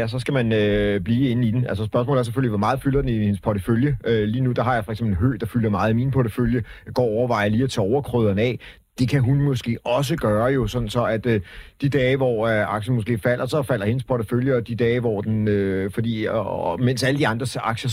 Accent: native